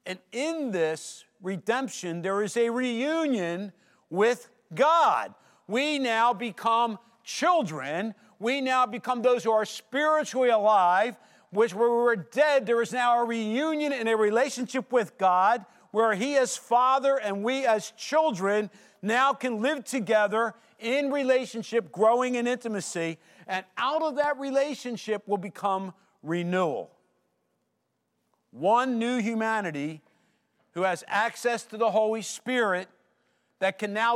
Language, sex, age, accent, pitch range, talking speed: English, male, 50-69, American, 185-245 Hz, 130 wpm